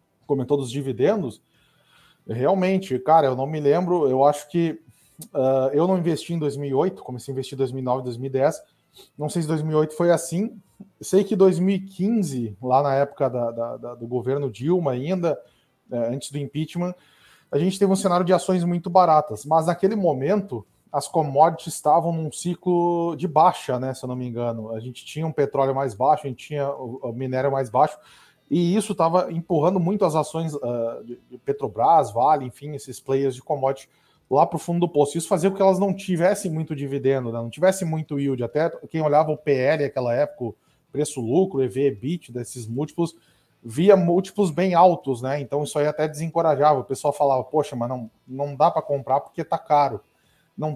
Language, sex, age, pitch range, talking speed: Portuguese, male, 20-39, 130-175 Hz, 180 wpm